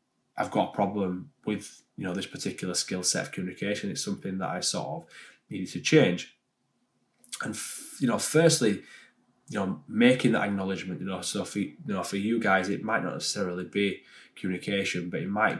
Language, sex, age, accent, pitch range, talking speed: English, male, 10-29, British, 90-105 Hz, 180 wpm